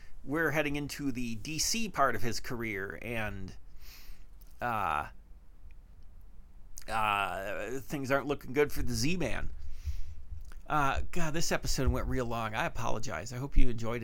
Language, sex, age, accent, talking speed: English, male, 40-59, American, 135 wpm